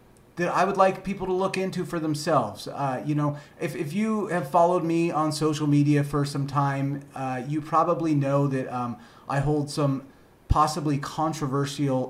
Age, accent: 30-49, American